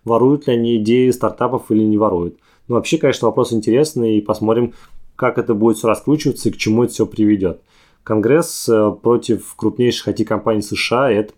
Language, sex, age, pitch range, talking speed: Russian, male, 20-39, 110-125 Hz, 170 wpm